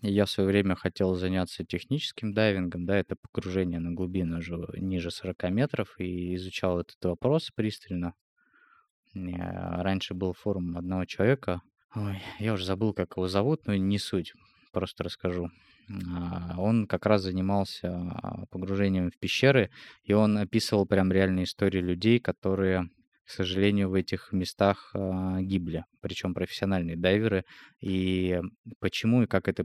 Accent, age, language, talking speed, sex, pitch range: native, 20-39, Russian, 135 wpm, male, 90-100 Hz